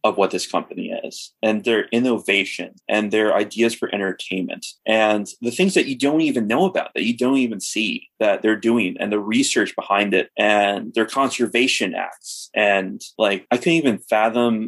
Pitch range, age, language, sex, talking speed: 100-120 Hz, 20-39, English, male, 180 wpm